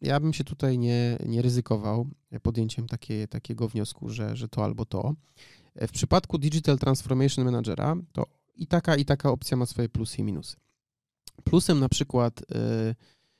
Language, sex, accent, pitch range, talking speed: Polish, male, native, 115-140 Hz, 155 wpm